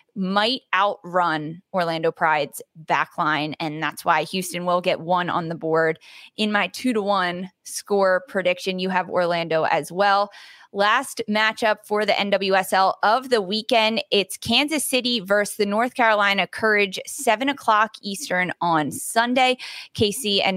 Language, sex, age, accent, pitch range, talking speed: English, female, 20-39, American, 180-230 Hz, 145 wpm